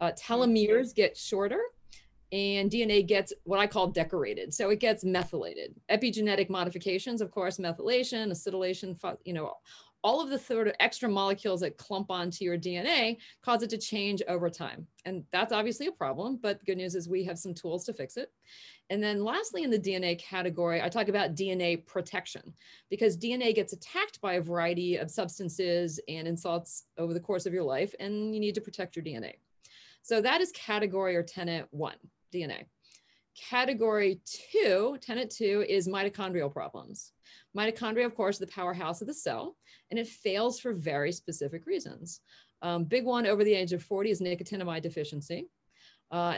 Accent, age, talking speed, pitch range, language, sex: American, 40-59, 175 wpm, 175-220 Hz, English, female